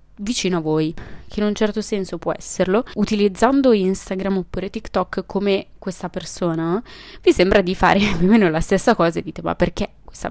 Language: Italian